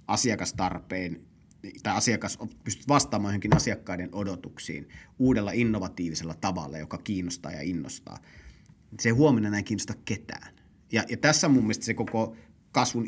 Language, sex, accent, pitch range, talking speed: Finnish, male, native, 95-120 Hz, 130 wpm